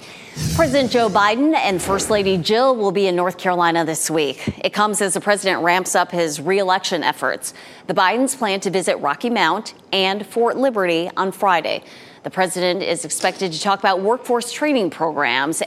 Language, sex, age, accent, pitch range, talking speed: English, female, 30-49, American, 170-220 Hz, 175 wpm